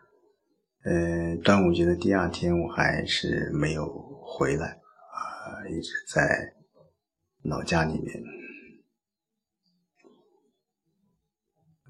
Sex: male